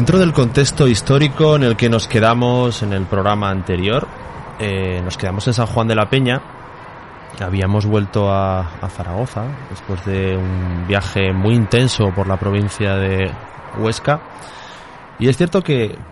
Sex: male